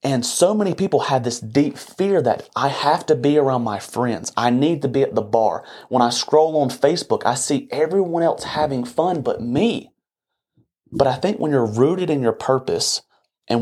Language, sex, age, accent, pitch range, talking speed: English, male, 30-49, American, 115-150 Hz, 205 wpm